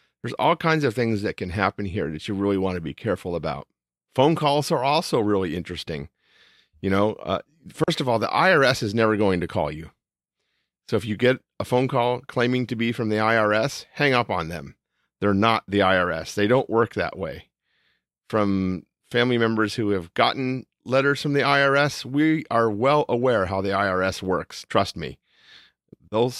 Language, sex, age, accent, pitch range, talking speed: English, male, 40-59, American, 100-140 Hz, 190 wpm